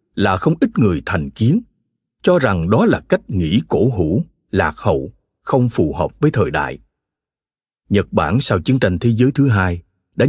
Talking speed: 185 wpm